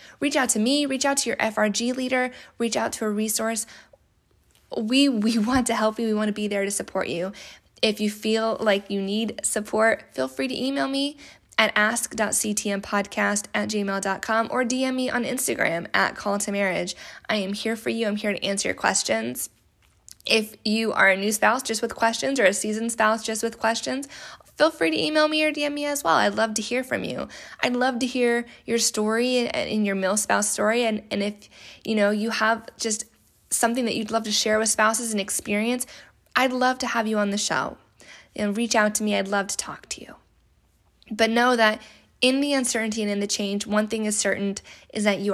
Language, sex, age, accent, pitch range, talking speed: English, female, 10-29, American, 205-235 Hz, 220 wpm